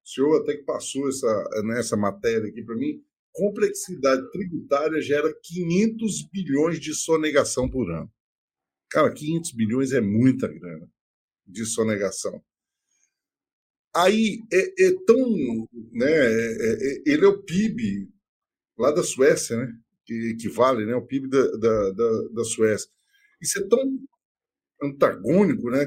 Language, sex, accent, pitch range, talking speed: Portuguese, male, Brazilian, 135-190 Hz, 140 wpm